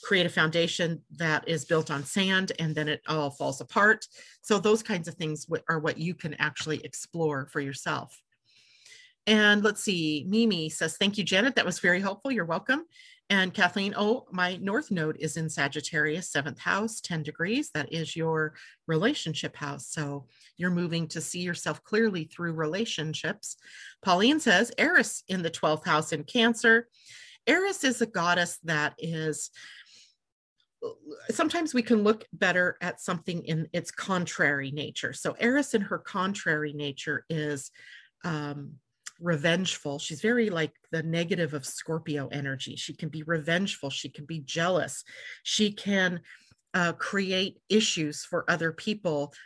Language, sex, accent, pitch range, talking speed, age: English, female, American, 155-200 Hz, 155 wpm, 40-59